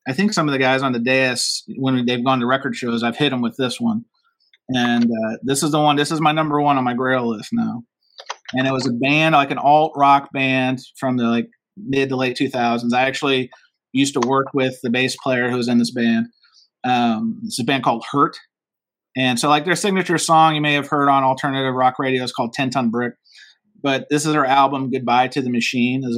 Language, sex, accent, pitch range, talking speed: English, male, American, 125-150 Hz, 240 wpm